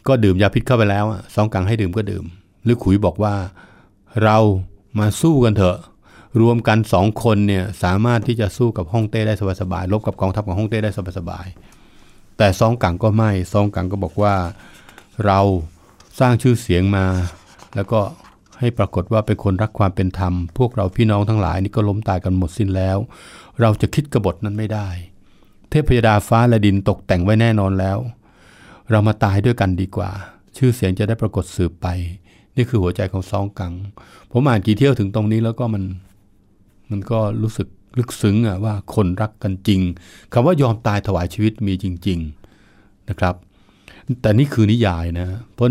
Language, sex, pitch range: Thai, male, 95-110 Hz